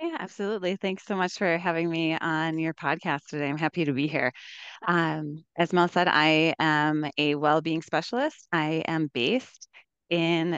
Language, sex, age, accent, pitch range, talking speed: English, female, 20-39, American, 150-175 Hz, 170 wpm